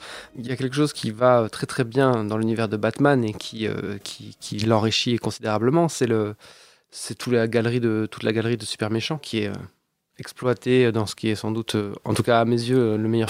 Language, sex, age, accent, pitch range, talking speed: French, male, 20-39, French, 110-145 Hz, 230 wpm